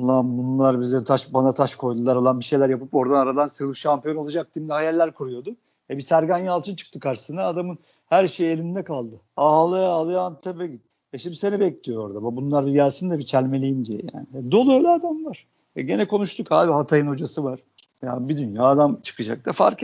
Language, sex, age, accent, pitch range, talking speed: Turkish, male, 50-69, native, 125-160 Hz, 200 wpm